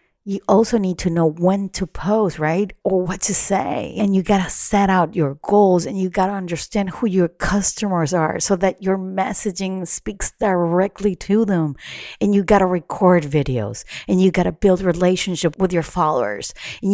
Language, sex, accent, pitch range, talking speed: English, female, American, 160-200 Hz, 190 wpm